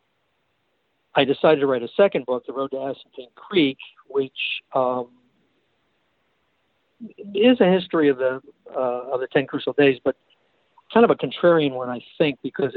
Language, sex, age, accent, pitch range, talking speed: English, male, 60-79, American, 125-145 Hz, 160 wpm